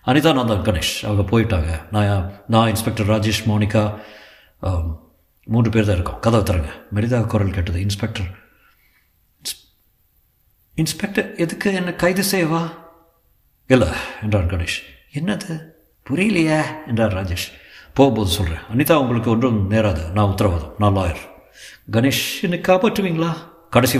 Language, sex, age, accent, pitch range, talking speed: Tamil, male, 60-79, native, 95-145 Hz, 120 wpm